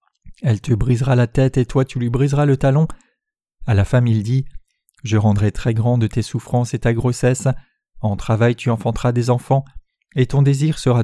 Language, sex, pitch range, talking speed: French, male, 115-140 Hz, 200 wpm